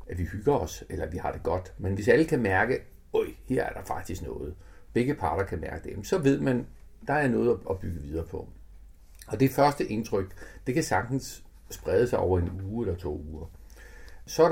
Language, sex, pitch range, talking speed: Danish, male, 90-125 Hz, 220 wpm